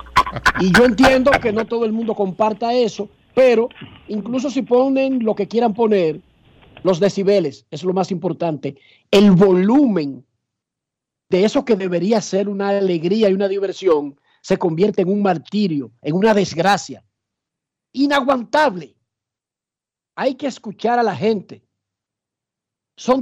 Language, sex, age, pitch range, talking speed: Spanish, male, 50-69, 165-230 Hz, 135 wpm